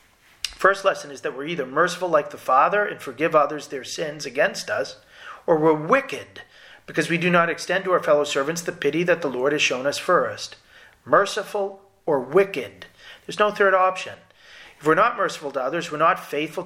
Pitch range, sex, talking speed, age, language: 160-195 Hz, male, 195 wpm, 40-59, English